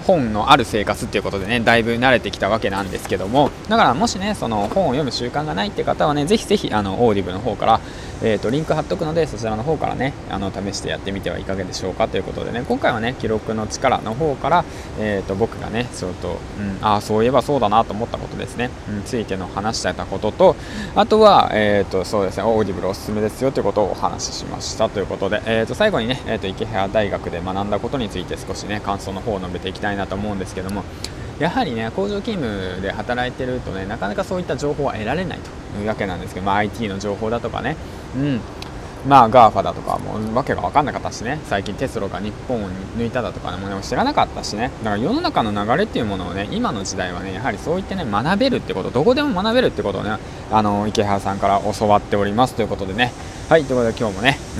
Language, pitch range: Japanese, 95-120 Hz